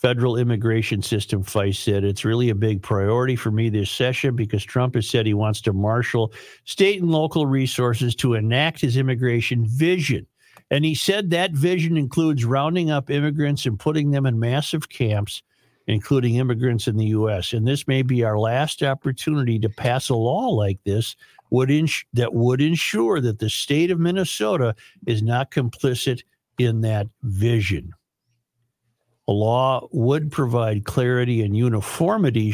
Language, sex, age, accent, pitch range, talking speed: English, male, 60-79, American, 110-135 Hz, 160 wpm